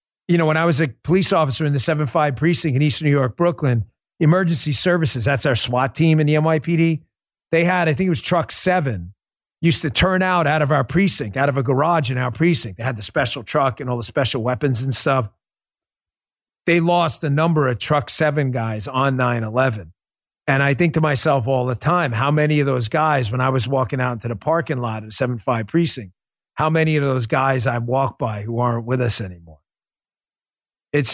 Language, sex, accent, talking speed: English, male, American, 215 wpm